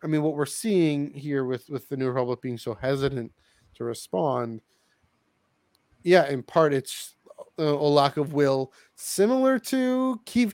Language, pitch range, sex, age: English, 125-155 Hz, male, 30-49